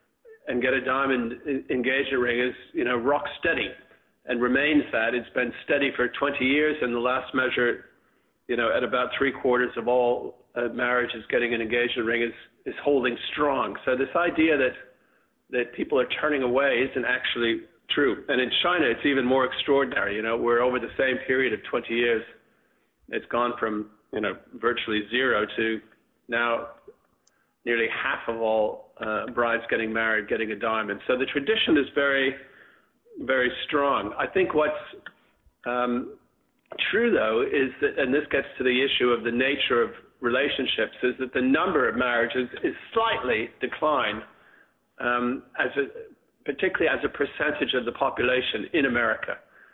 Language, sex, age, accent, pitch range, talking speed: English, male, 50-69, American, 120-135 Hz, 165 wpm